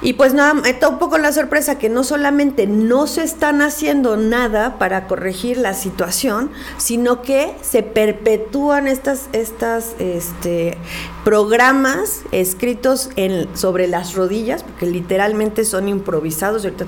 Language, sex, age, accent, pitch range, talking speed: Spanish, female, 40-59, Mexican, 195-265 Hz, 140 wpm